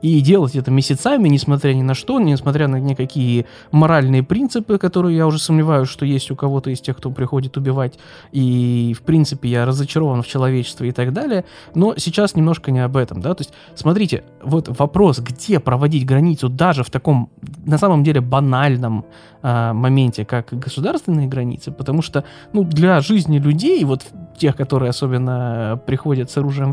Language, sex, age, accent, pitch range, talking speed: Ukrainian, male, 20-39, native, 130-175 Hz, 170 wpm